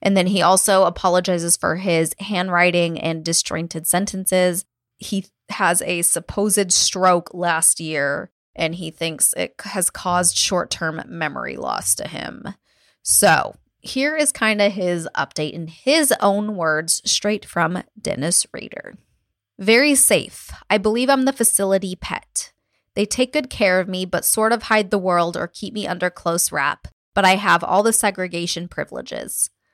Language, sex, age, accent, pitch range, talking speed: English, female, 20-39, American, 175-215 Hz, 155 wpm